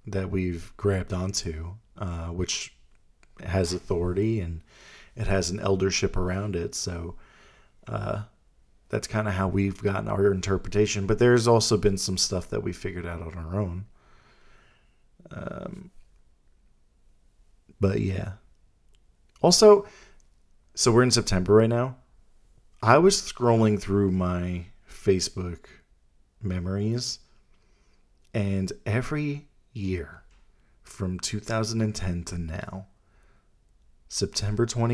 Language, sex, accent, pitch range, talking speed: English, male, American, 90-105 Hz, 110 wpm